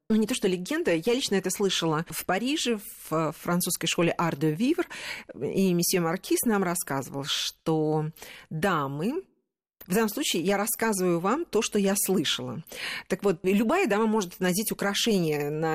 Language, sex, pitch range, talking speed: Russian, female, 170-220 Hz, 150 wpm